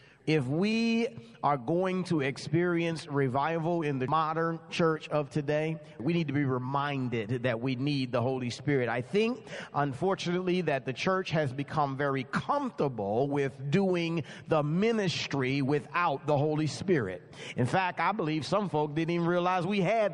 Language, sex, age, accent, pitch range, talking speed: English, male, 40-59, American, 145-195 Hz, 160 wpm